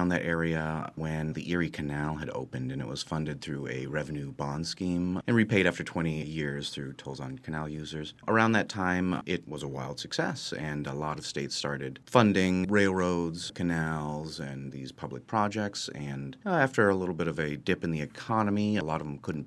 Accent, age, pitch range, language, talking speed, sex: American, 30-49, 70-90 Hz, English, 195 wpm, male